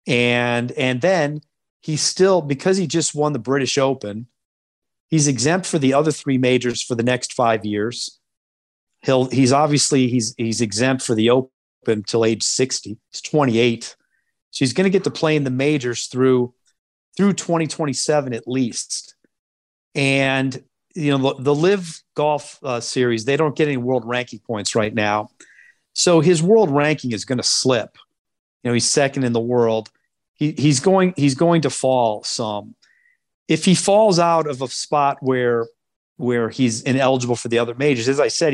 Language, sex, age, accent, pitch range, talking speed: English, male, 40-59, American, 120-155 Hz, 175 wpm